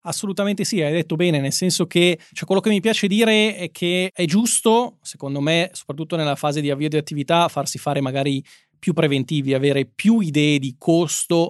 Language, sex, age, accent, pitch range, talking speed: Italian, male, 20-39, native, 140-175 Hz, 195 wpm